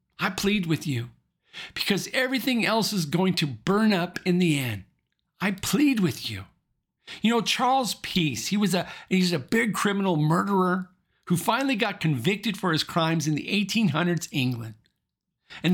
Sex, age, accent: male, 50-69, American